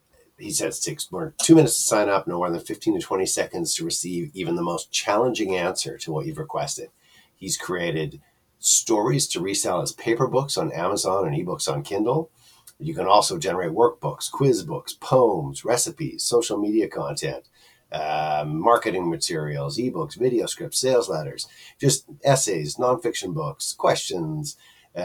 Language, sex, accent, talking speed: English, male, American, 155 wpm